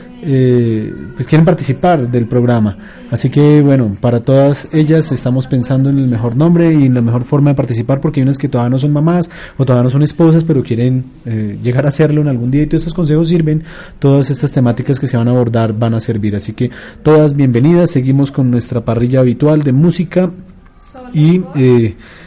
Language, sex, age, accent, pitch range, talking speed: Spanish, male, 30-49, Colombian, 125-155 Hz, 205 wpm